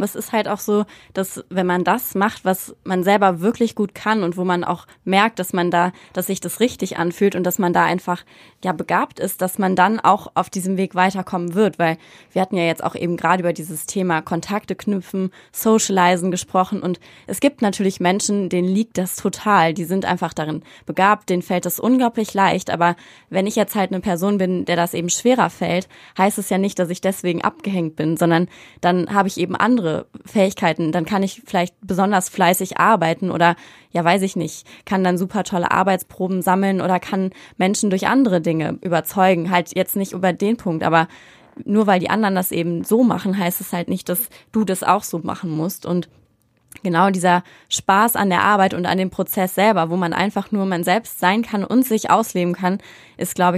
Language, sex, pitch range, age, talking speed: German, female, 175-200 Hz, 20-39, 210 wpm